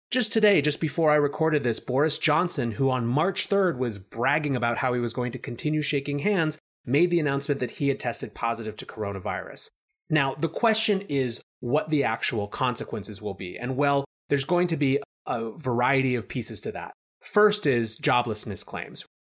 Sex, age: male, 30-49